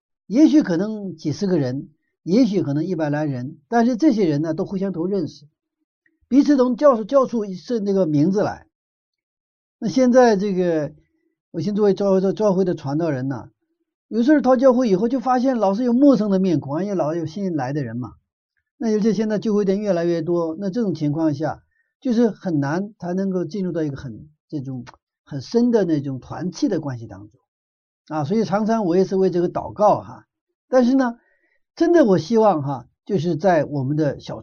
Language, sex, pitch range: Chinese, male, 150-230 Hz